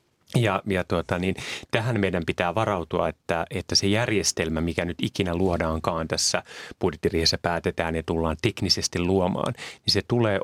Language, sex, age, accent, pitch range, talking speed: Finnish, male, 30-49, native, 85-105 Hz, 150 wpm